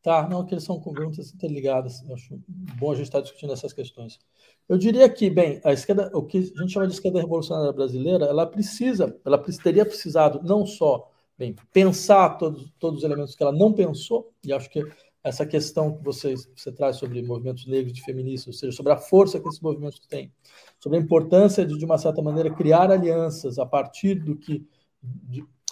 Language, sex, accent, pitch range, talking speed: Portuguese, male, Brazilian, 145-195 Hz, 195 wpm